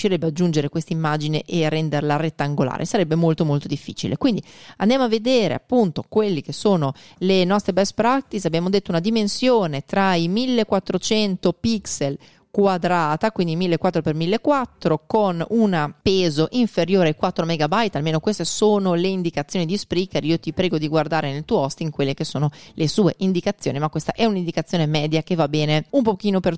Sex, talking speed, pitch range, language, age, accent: female, 170 wpm, 155-200 Hz, Italian, 30-49, native